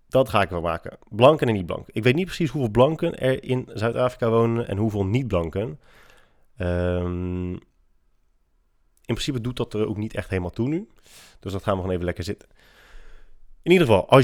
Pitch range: 95-130 Hz